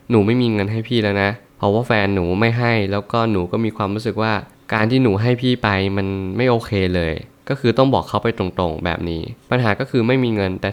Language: Thai